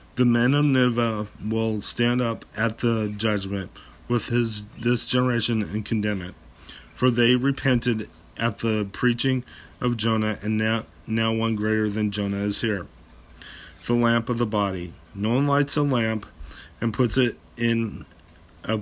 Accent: American